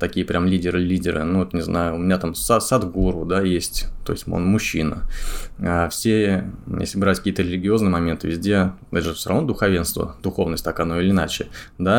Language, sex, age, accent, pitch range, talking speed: Russian, male, 20-39, native, 90-105 Hz, 170 wpm